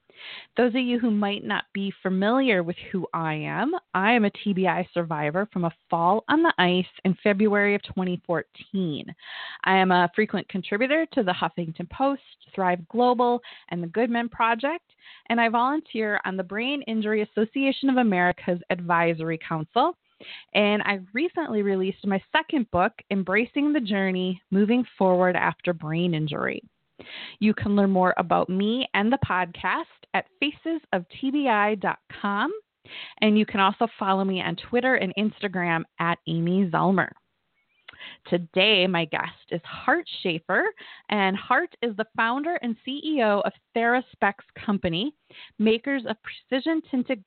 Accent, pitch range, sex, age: American, 185-245 Hz, female, 20-39